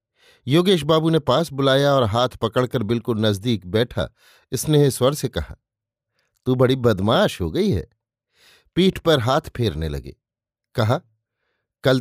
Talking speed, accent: 140 wpm, native